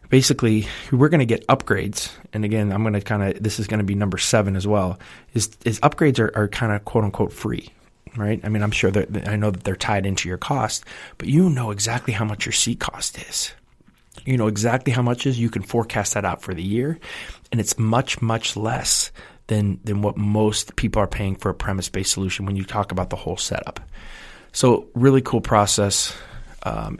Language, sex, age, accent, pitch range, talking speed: English, male, 20-39, American, 100-115 Hz, 215 wpm